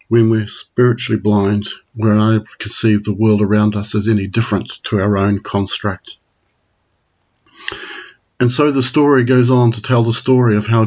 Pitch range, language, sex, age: 105-120 Hz, English, male, 50-69